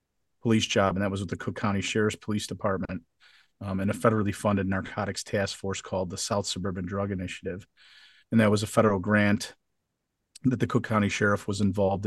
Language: English